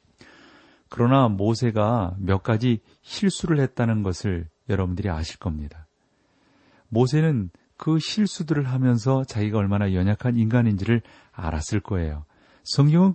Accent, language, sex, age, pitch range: native, Korean, male, 40-59, 90-125 Hz